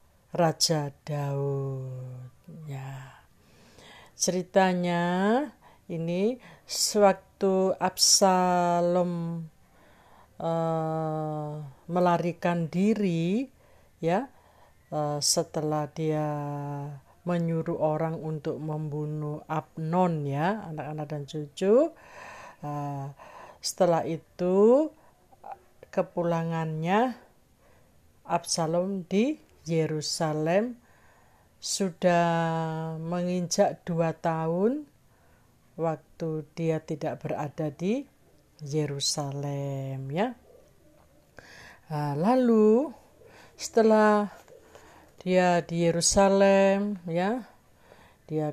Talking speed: 60 wpm